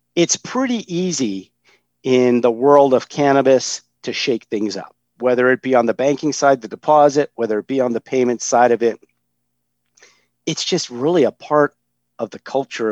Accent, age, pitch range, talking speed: American, 50-69, 105-135 Hz, 180 wpm